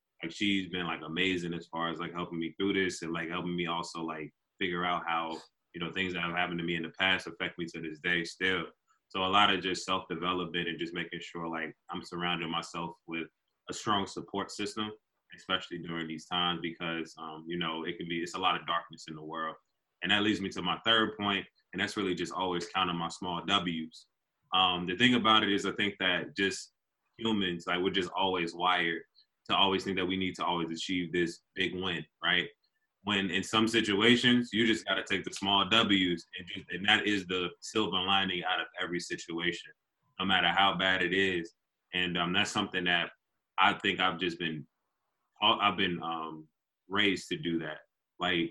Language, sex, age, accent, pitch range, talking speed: English, male, 20-39, American, 85-95 Hz, 210 wpm